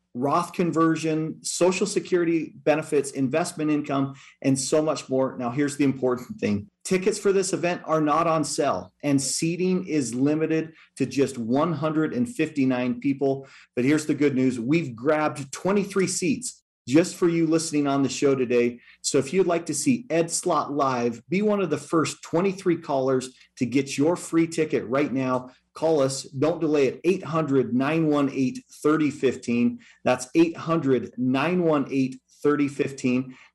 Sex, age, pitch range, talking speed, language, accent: male, 40-59, 130-165 Hz, 145 wpm, English, American